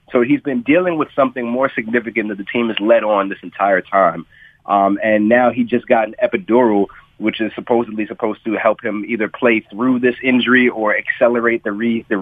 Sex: male